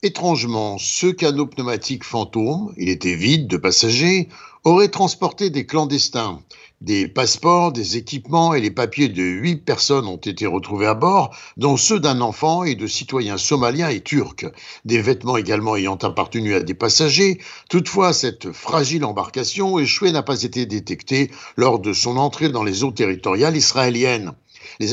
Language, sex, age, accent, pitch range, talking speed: French, male, 60-79, French, 115-155 Hz, 160 wpm